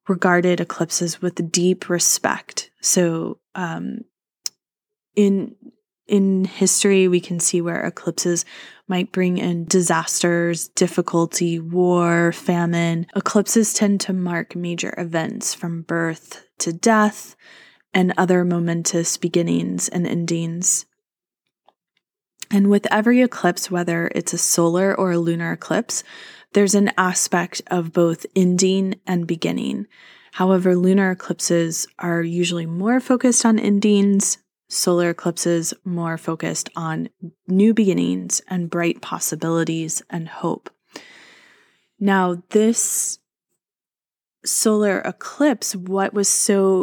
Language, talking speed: English, 110 wpm